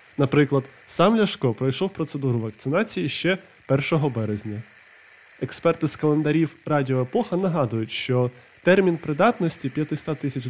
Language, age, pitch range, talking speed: Ukrainian, 20-39, 130-180 Hz, 110 wpm